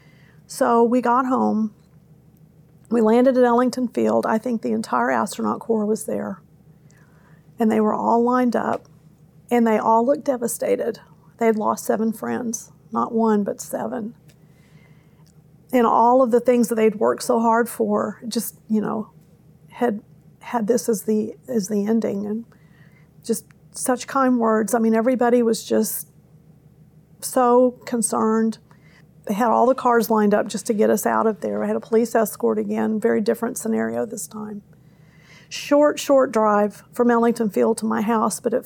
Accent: American